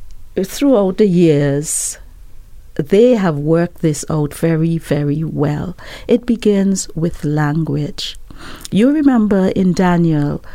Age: 50-69